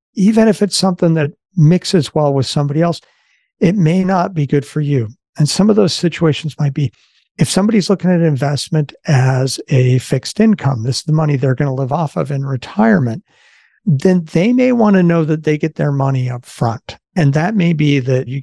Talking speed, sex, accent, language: 210 wpm, male, American, English